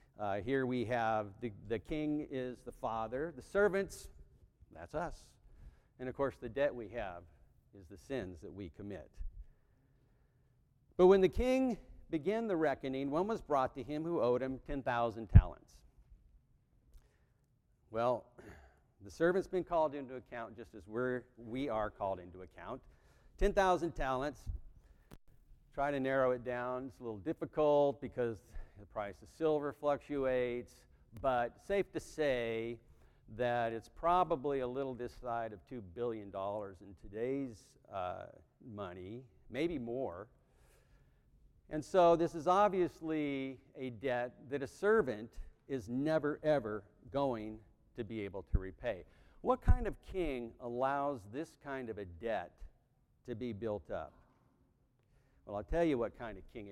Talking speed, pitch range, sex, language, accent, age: 145 wpm, 105-145 Hz, male, English, American, 50-69